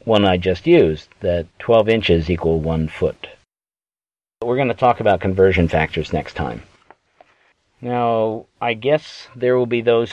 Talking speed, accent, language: 155 wpm, American, English